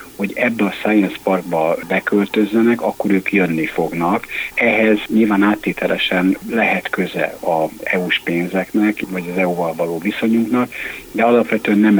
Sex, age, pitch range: male, 60-79, 95-110 Hz